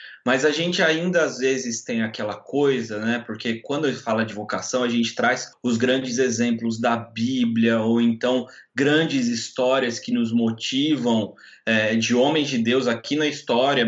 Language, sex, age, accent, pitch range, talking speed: Portuguese, male, 20-39, Brazilian, 115-160 Hz, 170 wpm